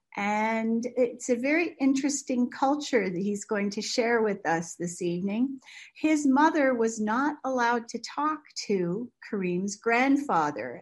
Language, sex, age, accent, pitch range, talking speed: English, female, 40-59, American, 185-255 Hz, 140 wpm